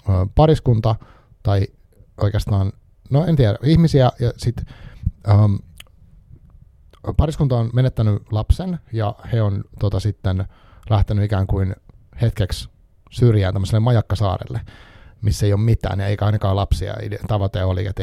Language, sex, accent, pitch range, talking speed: Finnish, male, native, 95-115 Hz, 120 wpm